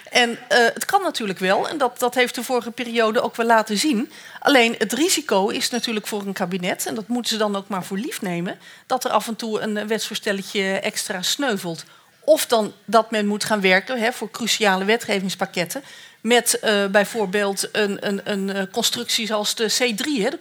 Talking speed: 195 wpm